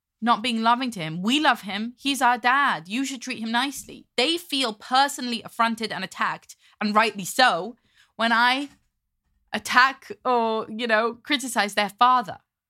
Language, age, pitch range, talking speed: English, 20-39, 200-265 Hz, 160 wpm